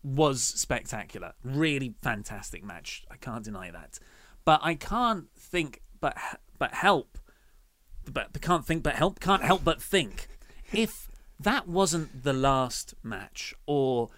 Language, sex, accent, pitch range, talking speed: English, male, British, 115-160 Hz, 140 wpm